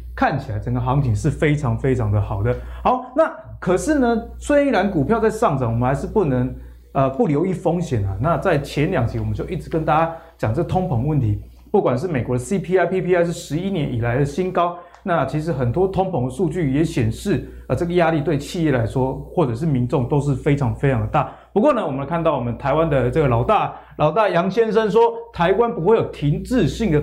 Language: Chinese